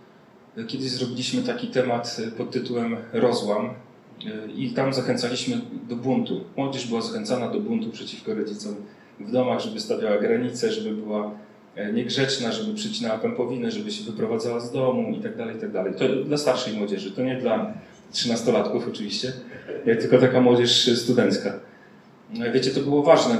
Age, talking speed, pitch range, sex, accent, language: 30-49, 140 wpm, 120-150 Hz, male, native, Polish